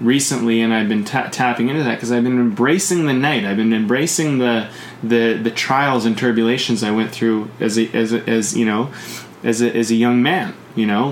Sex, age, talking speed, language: male, 20-39, 220 wpm, English